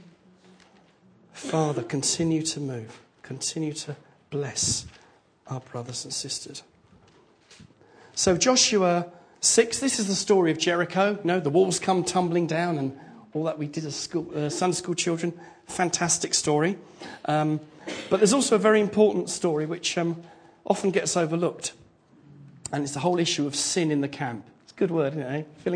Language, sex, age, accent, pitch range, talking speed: English, male, 40-59, British, 140-180 Hz, 170 wpm